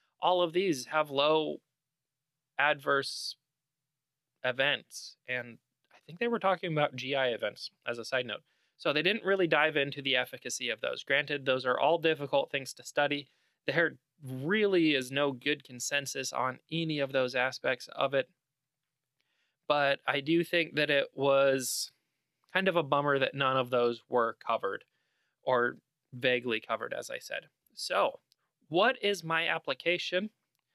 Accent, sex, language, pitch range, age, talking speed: American, male, English, 140-175 Hz, 20-39, 155 wpm